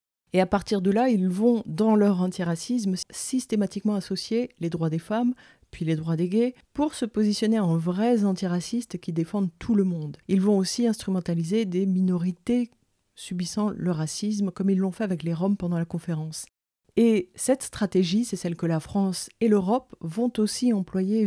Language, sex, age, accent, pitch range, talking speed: French, female, 40-59, French, 180-230 Hz, 180 wpm